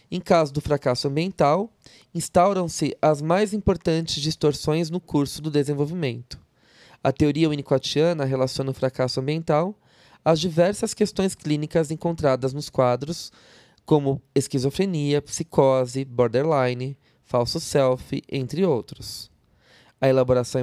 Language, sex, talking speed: Portuguese, male, 110 wpm